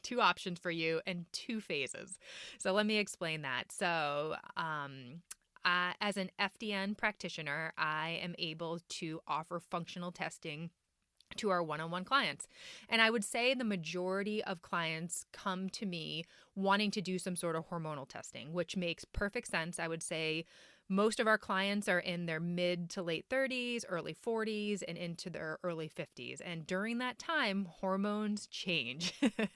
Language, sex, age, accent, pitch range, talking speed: English, female, 30-49, American, 170-215 Hz, 160 wpm